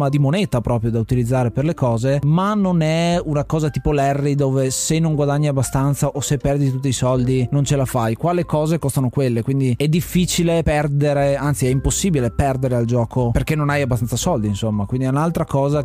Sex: male